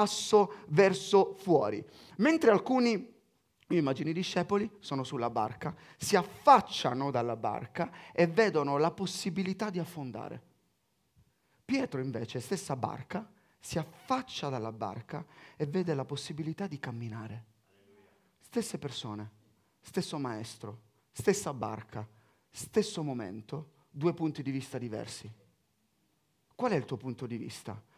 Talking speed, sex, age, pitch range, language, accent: 120 wpm, male, 30-49, 120-185 Hz, Italian, native